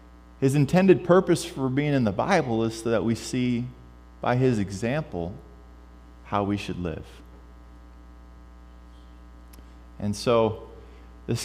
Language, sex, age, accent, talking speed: English, male, 20-39, American, 120 wpm